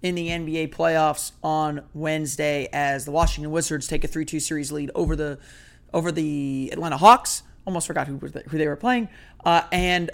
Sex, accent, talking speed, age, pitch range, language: male, American, 170 wpm, 30-49, 145-170 Hz, English